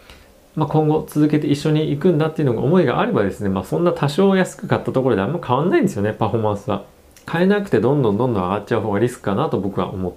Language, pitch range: Japanese, 100-155 Hz